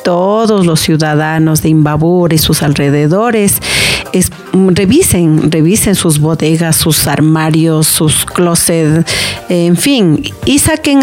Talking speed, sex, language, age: 110 wpm, female, Spanish, 40-59